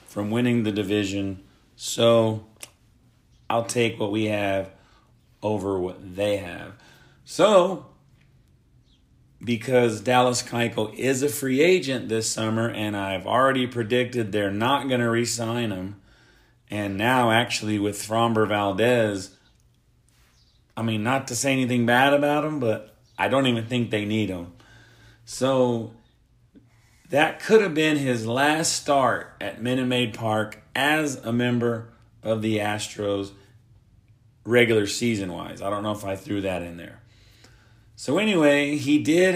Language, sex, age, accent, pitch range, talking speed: English, male, 40-59, American, 110-130 Hz, 135 wpm